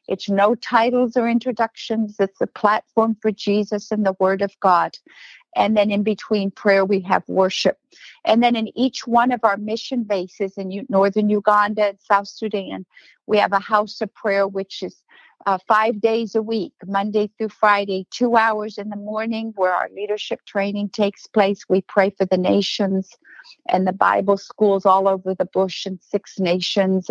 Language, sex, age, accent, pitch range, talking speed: English, female, 50-69, American, 195-225 Hz, 180 wpm